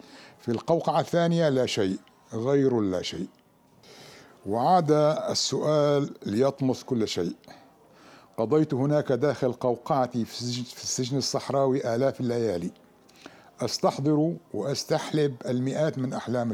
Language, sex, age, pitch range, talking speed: Arabic, male, 60-79, 120-145 Hz, 100 wpm